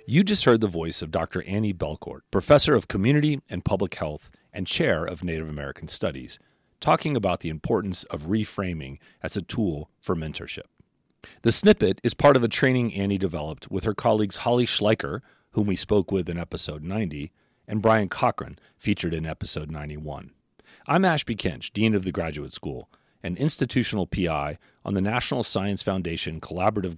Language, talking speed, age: English, 170 wpm, 40-59